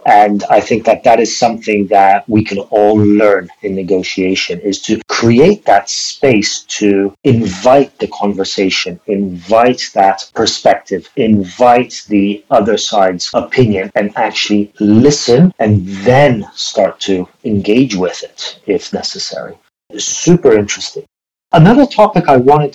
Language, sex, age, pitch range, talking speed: English, male, 40-59, 100-130 Hz, 130 wpm